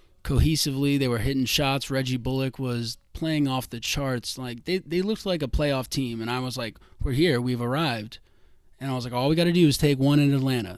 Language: English